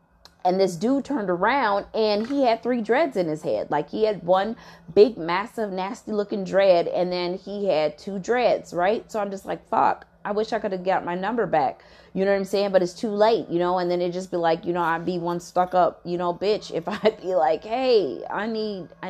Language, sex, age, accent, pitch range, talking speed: English, female, 20-39, American, 170-210 Hz, 245 wpm